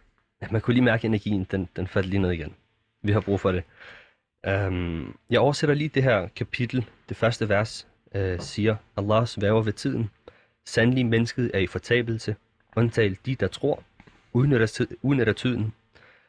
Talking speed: 170 wpm